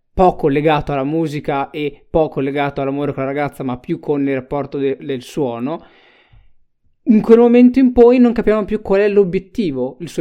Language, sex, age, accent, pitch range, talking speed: Italian, male, 20-39, native, 155-195 Hz, 190 wpm